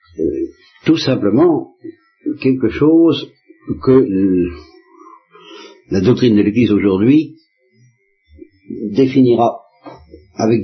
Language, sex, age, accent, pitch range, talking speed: French, male, 60-79, French, 95-135 Hz, 80 wpm